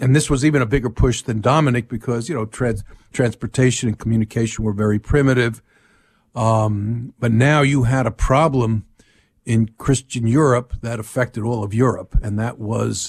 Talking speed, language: 165 wpm, English